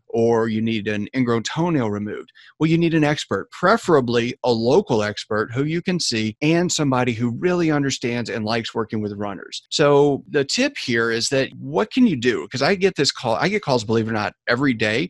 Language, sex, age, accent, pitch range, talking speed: English, male, 40-59, American, 110-145 Hz, 215 wpm